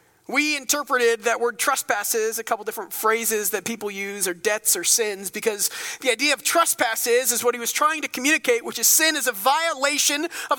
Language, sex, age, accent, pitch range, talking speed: English, male, 40-59, American, 210-315 Hz, 200 wpm